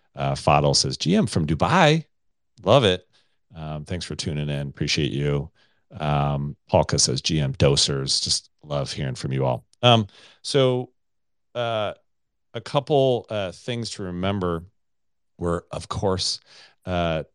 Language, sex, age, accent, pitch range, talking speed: English, male, 40-59, American, 75-95 Hz, 135 wpm